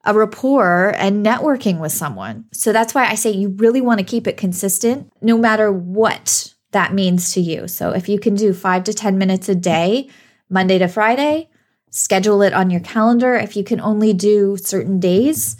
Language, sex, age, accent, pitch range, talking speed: English, female, 20-39, American, 180-230 Hz, 195 wpm